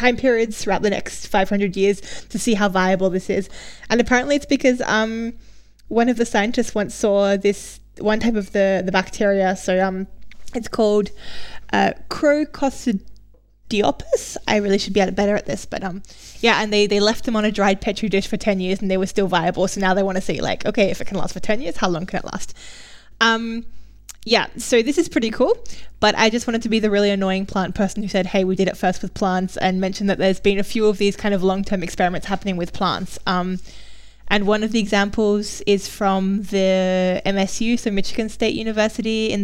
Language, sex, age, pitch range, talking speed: English, female, 10-29, 190-220 Hz, 215 wpm